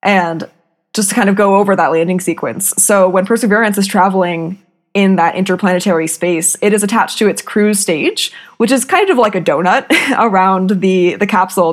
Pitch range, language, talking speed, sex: 180-215 Hz, English, 185 wpm, female